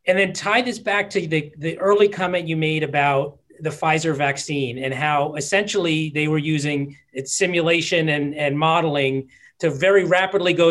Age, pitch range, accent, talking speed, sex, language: 40-59, 160-195 Hz, American, 175 wpm, male, English